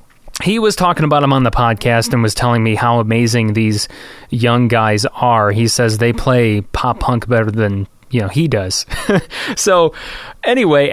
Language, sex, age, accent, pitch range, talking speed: English, male, 30-49, American, 115-145 Hz, 175 wpm